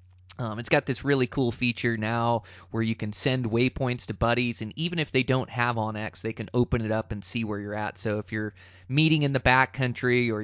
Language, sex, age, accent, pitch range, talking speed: English, male, 20-39, American, 105-125 Hz, 240 wpm